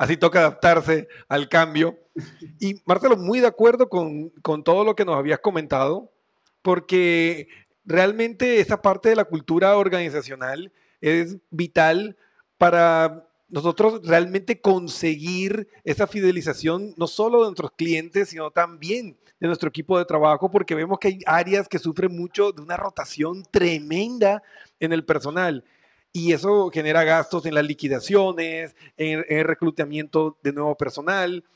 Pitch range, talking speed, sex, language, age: 160-195 Hz, 140 wpm, male, Spanish, 40-59